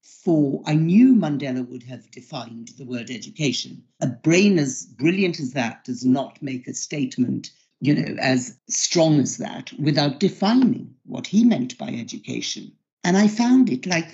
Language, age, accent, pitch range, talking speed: English, 60-79, British, 150-210 Hz, 165 wpm